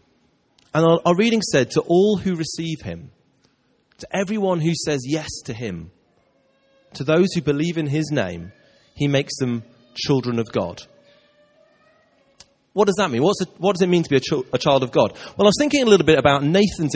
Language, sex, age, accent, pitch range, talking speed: English, male, 30-49, British, 125-190 Hz, 185 wpm